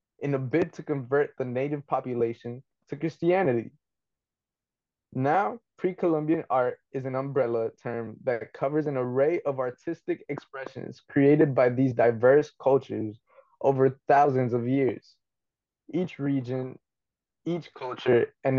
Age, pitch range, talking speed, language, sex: 20-39, 125-150 Hz, 125 wpm, English, male